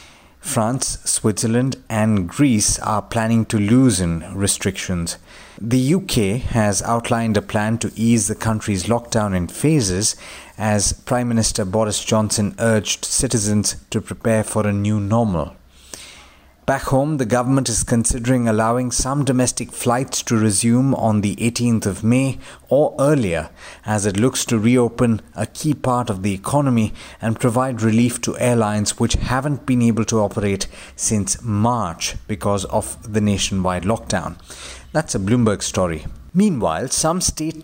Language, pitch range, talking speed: English, 100-120 Hz, 145 wpm